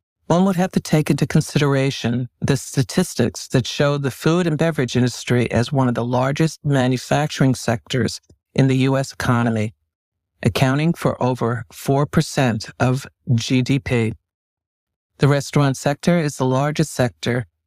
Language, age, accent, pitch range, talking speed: English, 60-79, American, 115-150 Hz, 135 wpm